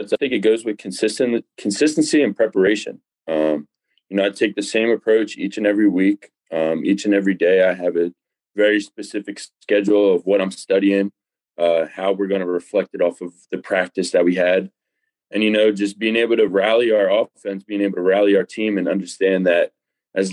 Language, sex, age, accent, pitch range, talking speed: English, male, 20-39, American, 95-105 Hz, 205 wpm